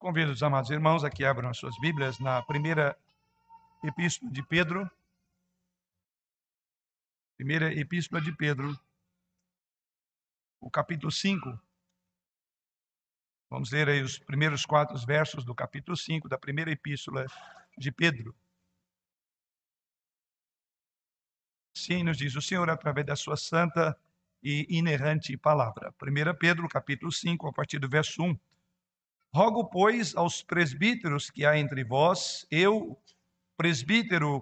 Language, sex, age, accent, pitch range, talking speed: Portuguese, male, 60-79, Brazilian, 145-185 Hz, 120 wpm